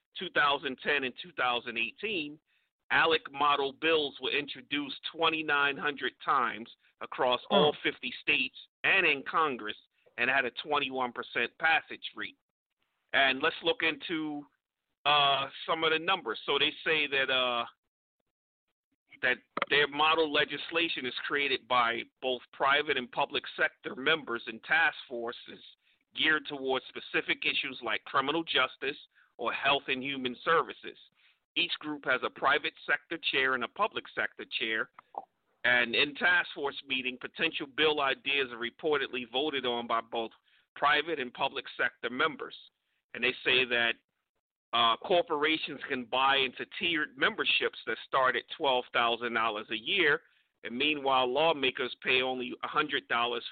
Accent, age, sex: American, 40-59, male